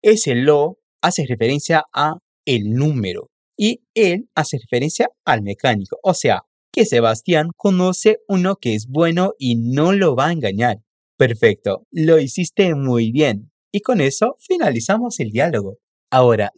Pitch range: 110-165 Hz